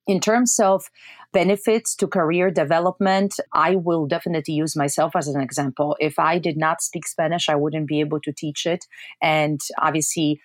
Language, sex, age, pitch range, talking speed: English, female, 30-49, 150-185 Hz, 170 wpm